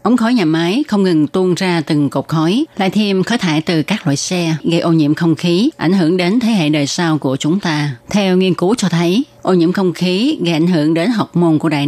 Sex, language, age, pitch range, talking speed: female, Vietnamese, 20-39, 155-185 Hz, 260 wpm